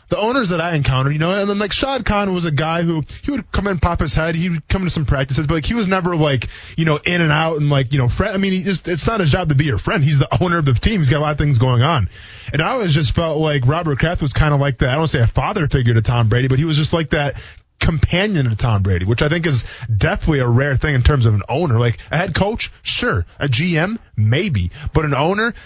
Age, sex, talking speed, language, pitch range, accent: 20-39, male, 300 wpm, English, 125-155 Hz, American